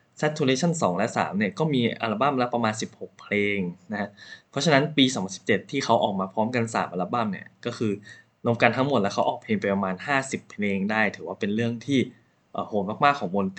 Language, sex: Thai, male